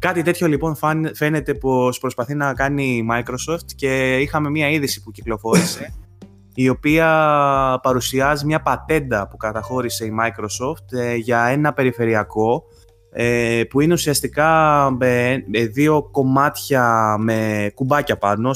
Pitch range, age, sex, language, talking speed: 105-145 Hz, 20-39, male, Greek, 120 wpm